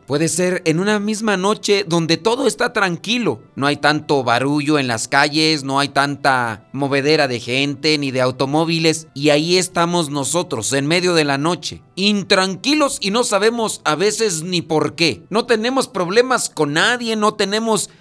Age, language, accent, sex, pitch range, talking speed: 40-59, Spanish, Mexican, male, 145-190 Hz, 170 wpm